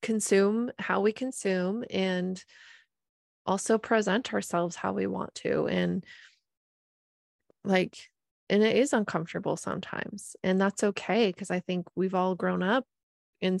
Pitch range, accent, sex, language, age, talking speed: 180-215 Hz, American, female, English, 20-39, 130 wpm